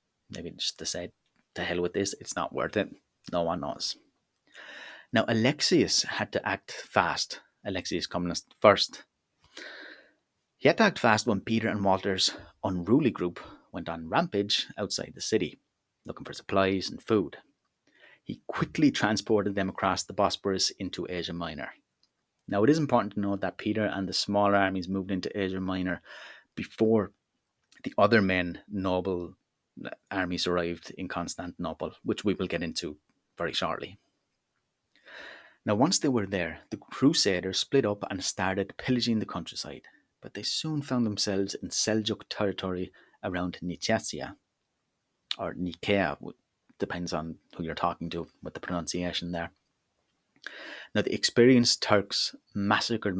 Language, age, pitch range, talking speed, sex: English, 30-49, 90-105 Hz, 145 wpm, male